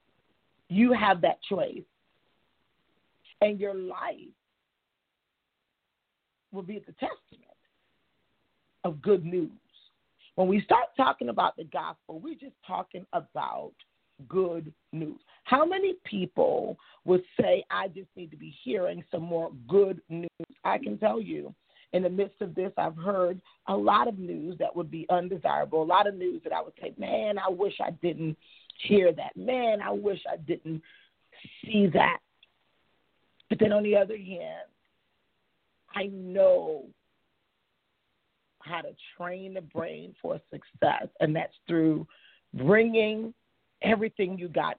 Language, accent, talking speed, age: English, American, 140 wpm, 40-59